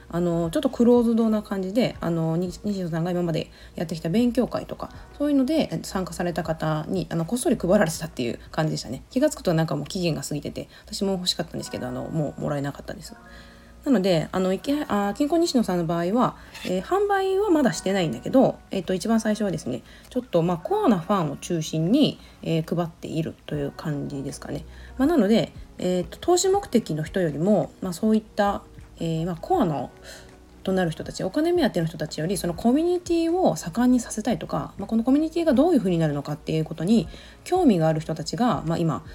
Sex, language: female, Japanese